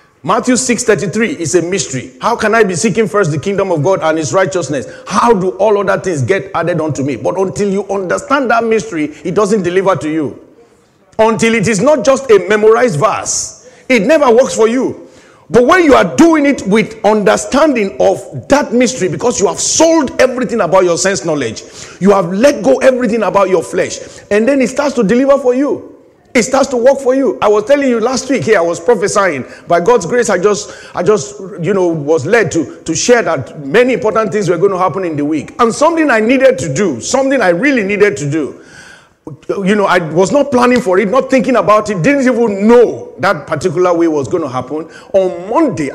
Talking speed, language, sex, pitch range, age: 215 wpm, English, male, 180-250 Hz, 50-69